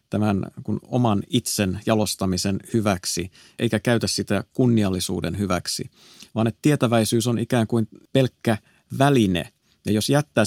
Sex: male